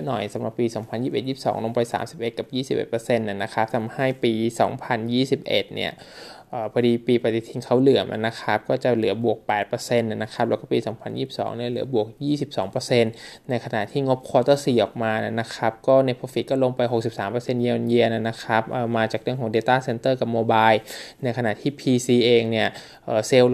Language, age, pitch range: Thai, 20-39, 115-130 Hz